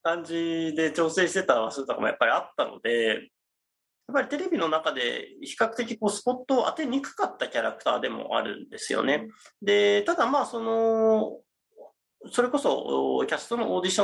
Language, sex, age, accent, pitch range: Japanese, male, 30-49, native, 165-275 Hz